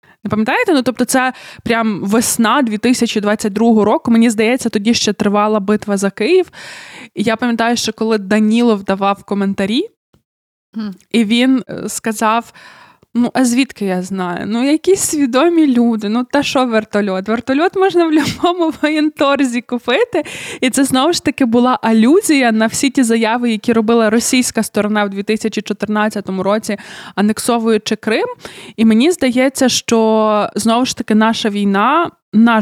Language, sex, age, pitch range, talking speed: Ukrainian, female, 20-39, 205-245 Hz, 145 wpm